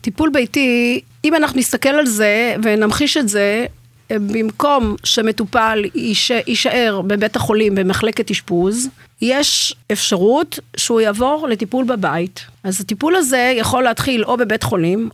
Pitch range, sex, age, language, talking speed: 195-240 Hz, female, 50-69, Hebrew, 125 wpm